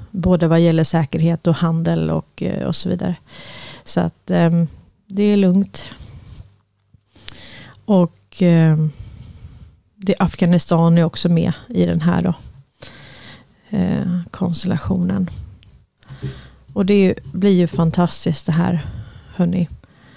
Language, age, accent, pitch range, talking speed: Swedish, 30-49, native, 135-185 Hz, 105 wpm